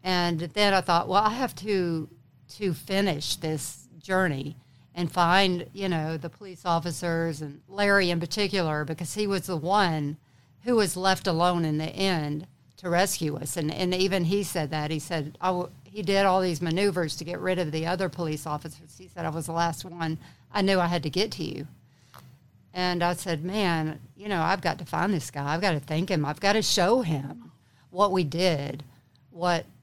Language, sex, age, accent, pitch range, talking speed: English, female, 60-79, American, 145-185 Hz, 205 wpm